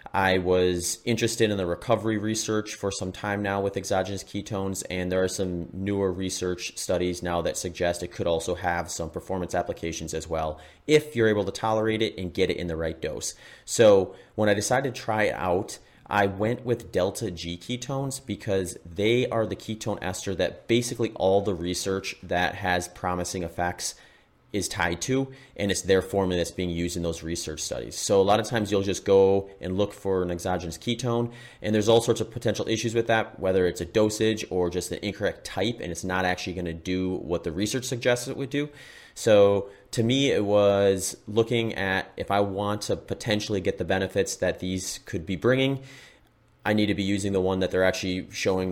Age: 30-49